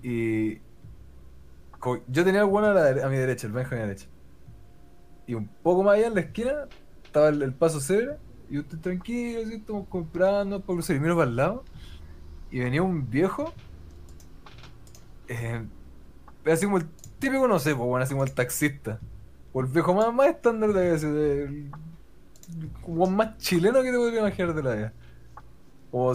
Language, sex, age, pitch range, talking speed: Spanish, male, 20-39, 125-180 Hz, 175 wpm